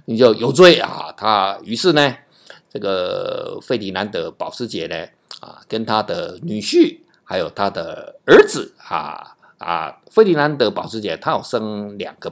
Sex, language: male, Chinese